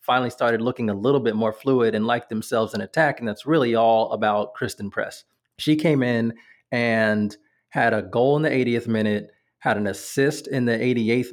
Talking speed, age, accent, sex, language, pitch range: 195 wpm, 30-49, American, male, English, 110-140 Hz